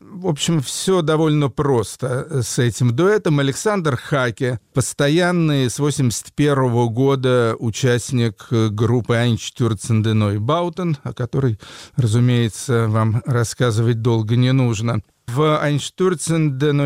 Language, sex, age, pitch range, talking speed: Russian, male, 40-59, 115-145 Hz, 105 wpm